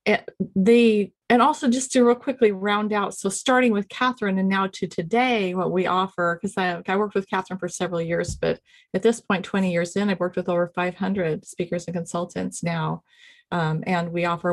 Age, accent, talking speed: 30-49, American, 205 wpm